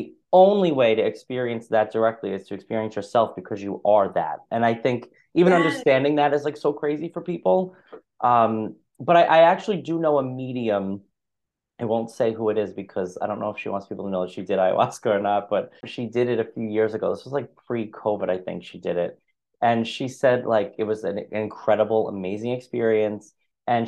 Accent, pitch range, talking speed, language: American, 105-125 Hz, 215 wpm, English